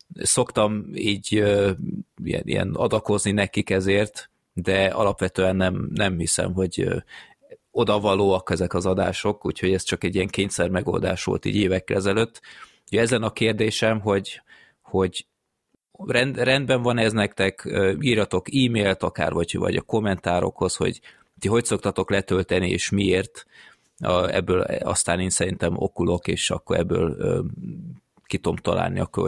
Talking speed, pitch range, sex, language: 125 wpm, 90-105 Hz, male, Hungarian